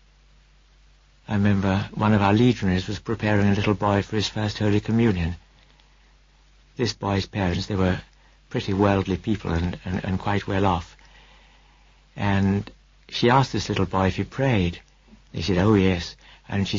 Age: 60-79